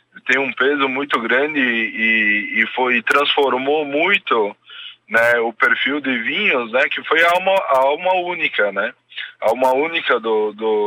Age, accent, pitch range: 20-39, Brazilian, 115-180 Hz